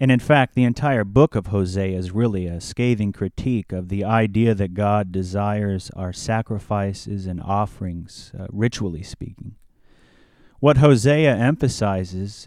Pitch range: 100-125 Hz